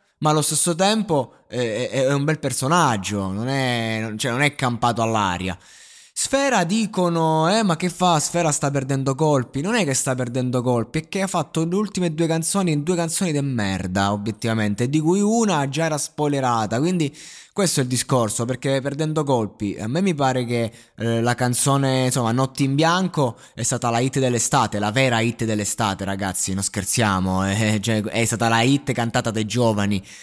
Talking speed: 180 wpm